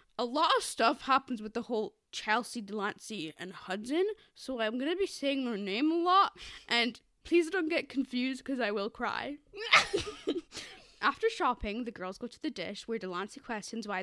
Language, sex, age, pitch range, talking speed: English, female, 10-29, 215-330 Hz, 185 wpm